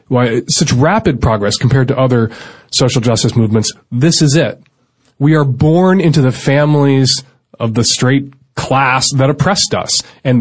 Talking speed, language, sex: 155 wpm, English, male